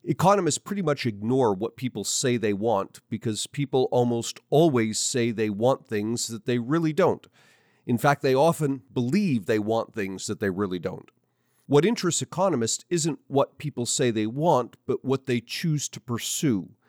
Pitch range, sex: 115-150 Hz, male